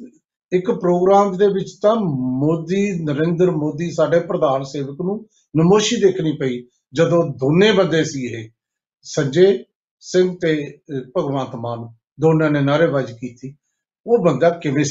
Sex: male